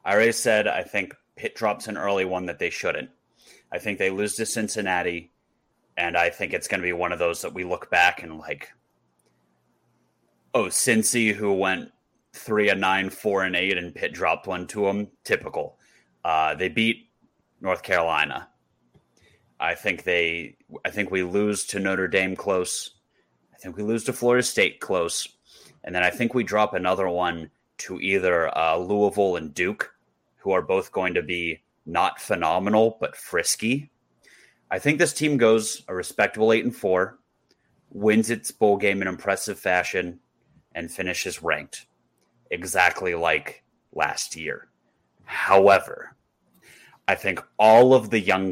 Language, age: English, 30-49